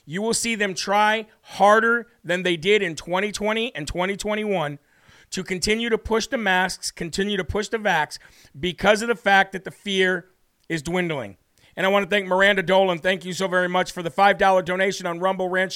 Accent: American